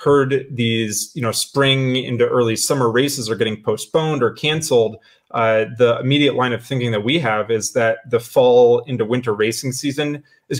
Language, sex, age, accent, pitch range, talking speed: English, male, 20-39, American, 115-145 Hz, 180 wpm